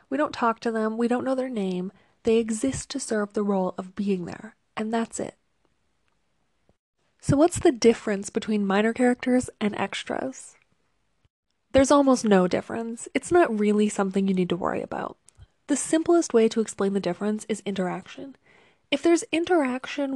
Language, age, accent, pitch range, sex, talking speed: English, 20-39, American, 205-275 Hz, female, 165 wpm